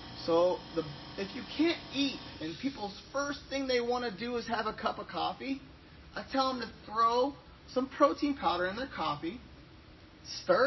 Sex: male